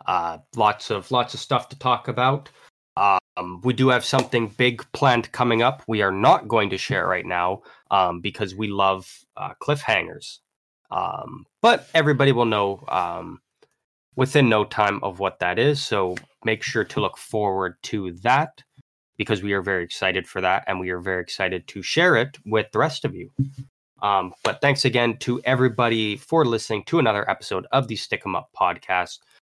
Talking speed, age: 180 wpm, 20-39